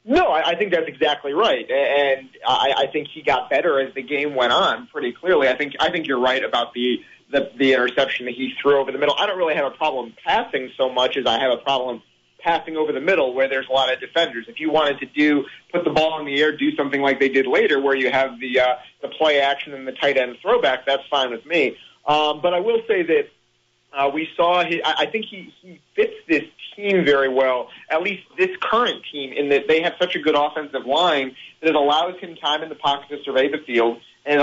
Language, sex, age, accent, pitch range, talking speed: English, male, 30-49, American, 135-155 Hz, 245 wpm